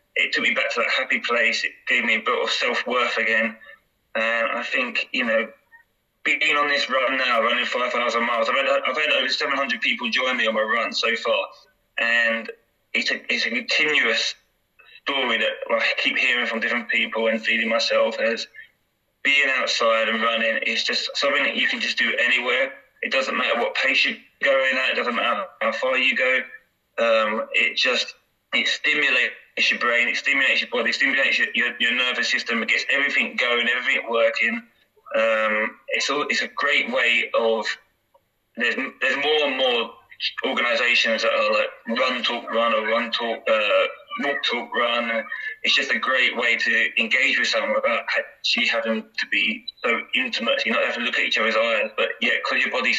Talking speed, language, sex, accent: 195 wpm, English, male, British